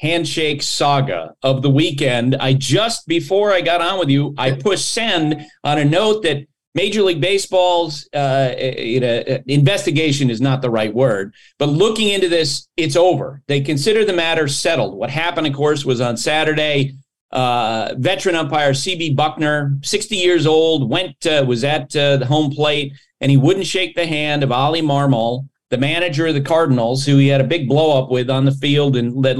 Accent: American